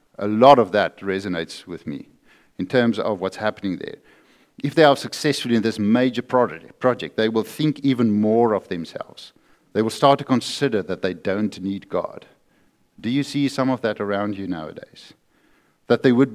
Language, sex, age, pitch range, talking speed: English, male, 50-69, 95-125 Hz, 185 wpm